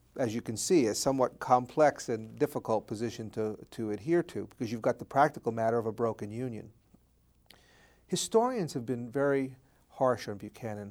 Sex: male